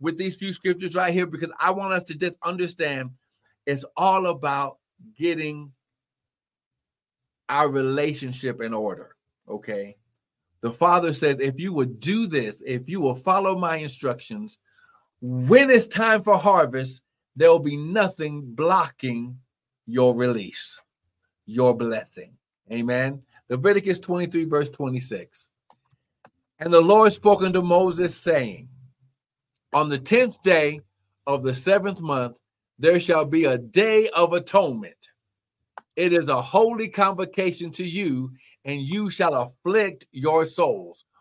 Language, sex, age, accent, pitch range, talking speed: English, male, 50-69, American, 130-195 Hz, 130 wpm